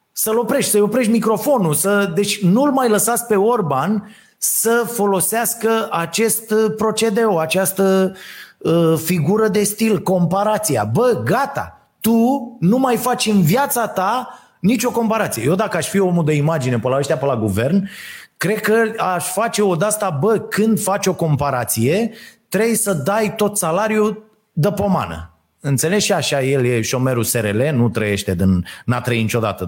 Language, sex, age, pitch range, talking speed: Romanian, male, 30-49, 135-210 Hz, 145 wpm